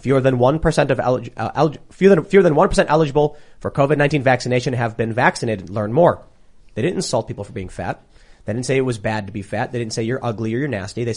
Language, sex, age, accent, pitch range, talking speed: English, male, 30-49, American, 110-145 Hz, 255 wpm